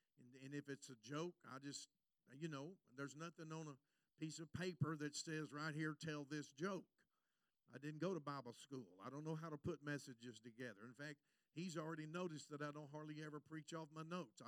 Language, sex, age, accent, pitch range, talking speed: English, male, 50-69, American, 140-175 Hz, 210 wpm